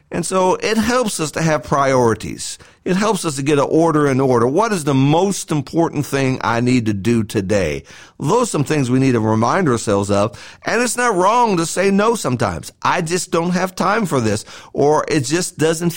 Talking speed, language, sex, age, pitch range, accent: 215 wpm, English, male, 50-69, 135-180 Hz, American